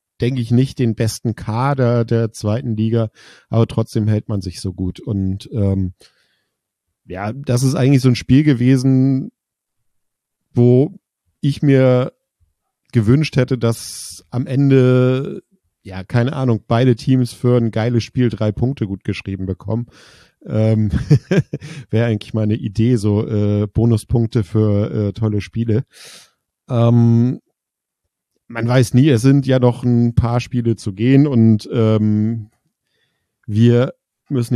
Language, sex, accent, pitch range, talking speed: German, male, German, 110-130 Hz, 135 wpm